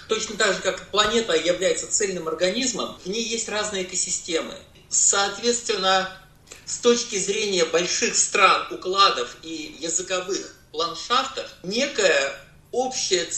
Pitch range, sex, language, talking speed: 180-245 Hz, male, Russian, 110 wpm